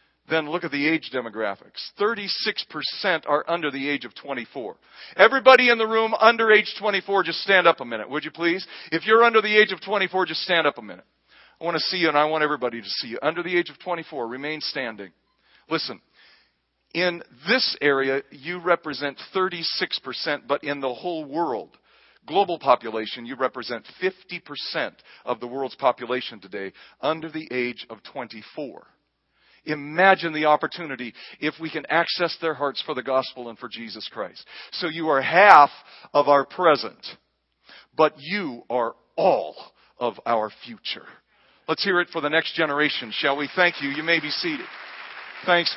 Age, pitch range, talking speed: 40-59, 145-190 Hz, 175 wpm